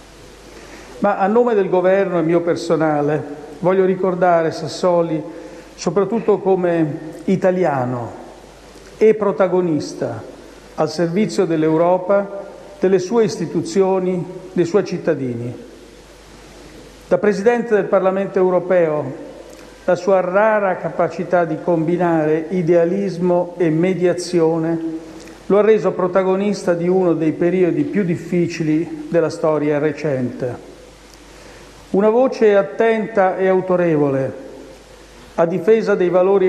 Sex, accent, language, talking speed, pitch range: male, native, Italian, 100 wpm, 165-195 Hz